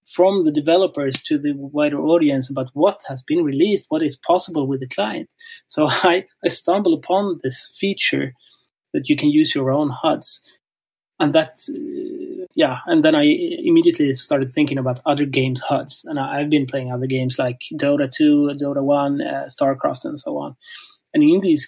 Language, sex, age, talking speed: English, male, 30-49, 185 wpm